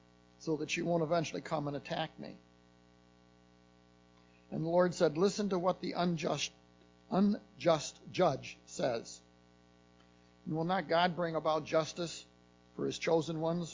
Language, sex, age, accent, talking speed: English, male, 60-79, American, 135 wpm